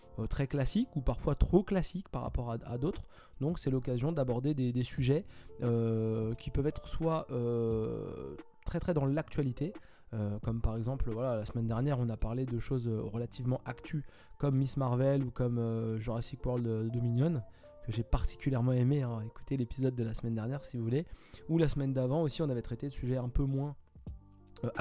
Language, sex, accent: French, male, French